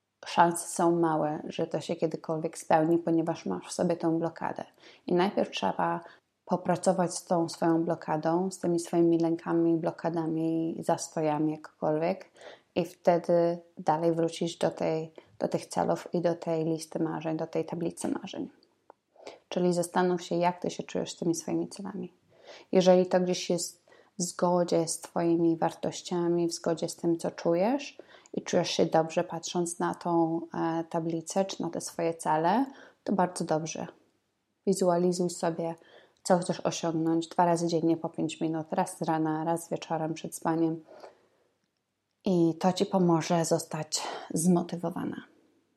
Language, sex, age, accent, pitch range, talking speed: Polish, female, 20-39, native, 165-180 Hz, 145 wpm